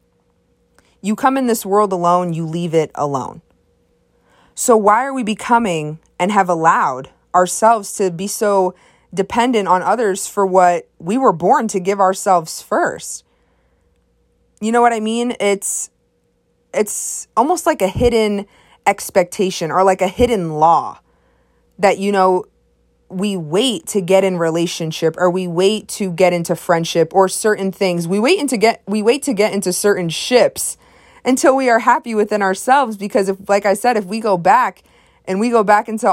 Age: 20-39